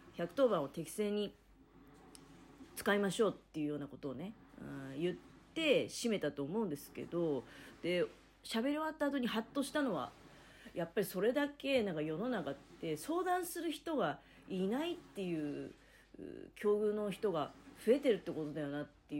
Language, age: Japanese, 40-59